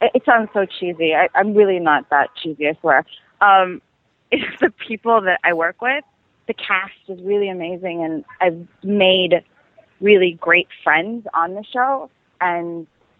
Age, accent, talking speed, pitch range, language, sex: 30-49, American, 160 wpm, 170-205 Hz, English, female